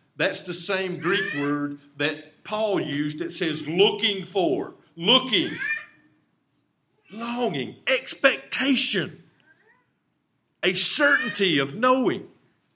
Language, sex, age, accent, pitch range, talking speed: English, male, 50-69, American, 145-205 Hz, 90 wpm